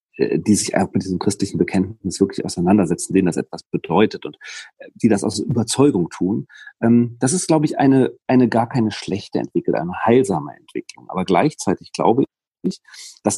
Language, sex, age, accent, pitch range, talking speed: German, male, 40-59, German, 110-135 Hz, 165 wpm